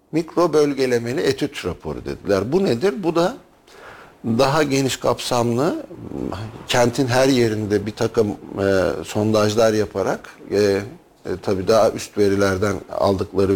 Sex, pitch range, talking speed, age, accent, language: male, 95-125 Hz, 115 wpm, 50-69, native, Turkish